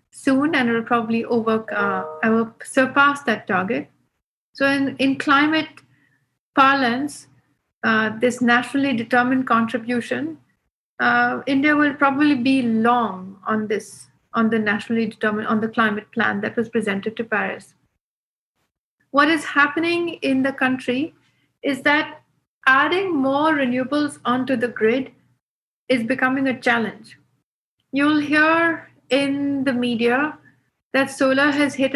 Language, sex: English, female